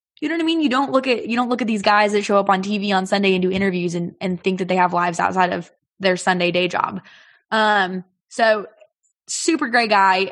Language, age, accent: English, 20-39, American